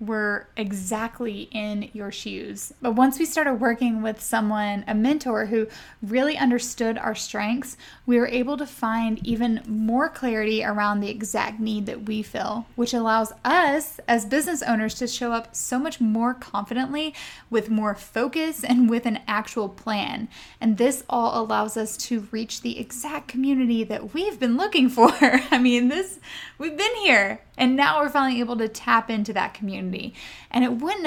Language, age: English, 10-29